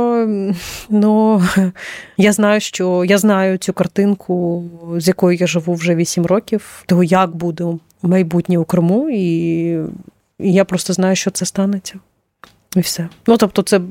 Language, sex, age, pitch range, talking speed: Ukrainian, female, 30-49, 170-200 Hz, 145 wpm